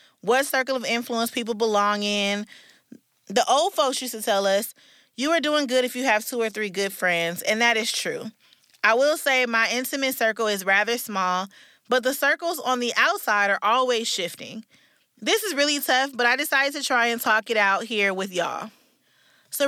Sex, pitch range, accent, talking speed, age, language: female, 210-265 Hz, American, 200 wpm, 20-39, English